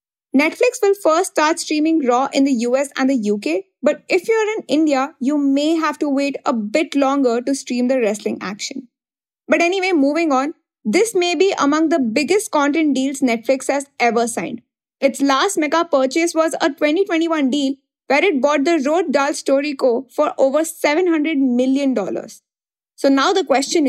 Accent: Indian